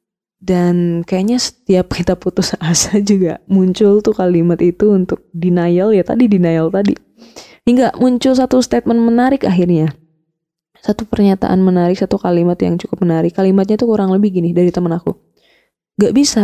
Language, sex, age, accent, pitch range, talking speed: Indonesian, female, 10-29, native, 180-230 Hz, 150 wpm